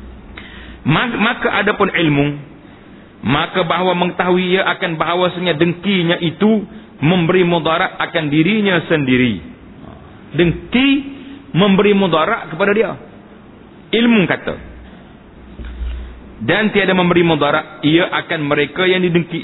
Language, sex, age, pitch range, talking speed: Malay, male, 40-59, 155-220 Hz, 105 wpm